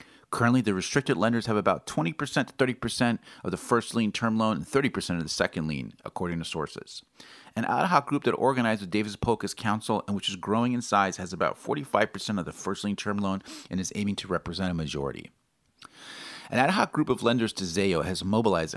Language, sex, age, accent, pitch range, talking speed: English, male, 40-59, American, 90-120 Hz, 210 wpm